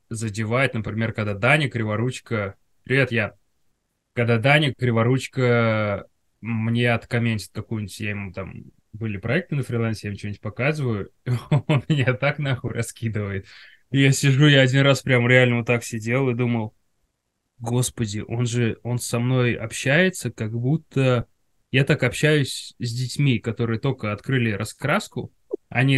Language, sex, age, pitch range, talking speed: Russian, male, 20-39, 115-150 Hz, 140 wpm